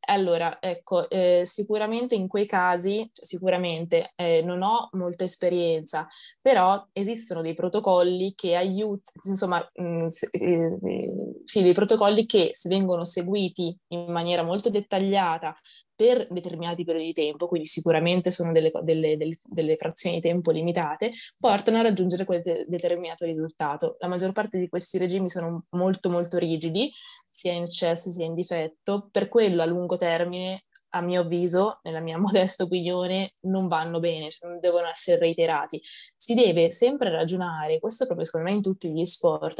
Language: Italian